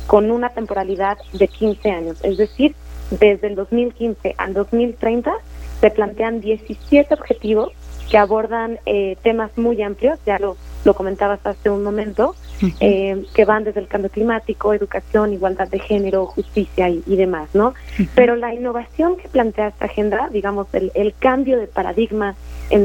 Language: Spanish